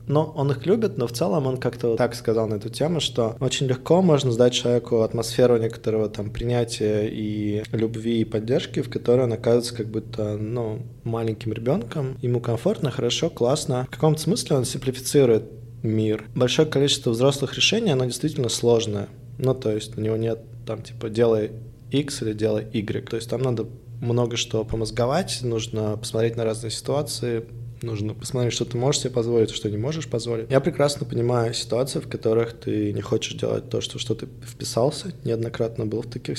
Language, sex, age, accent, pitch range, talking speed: Russian, male, 20-39, native, 110-130 Hz, 180 wpm